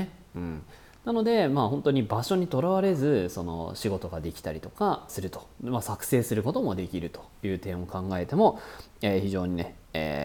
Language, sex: Japanese, male